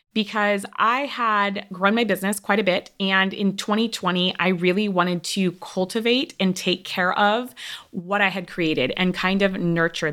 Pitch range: 160-195 Hz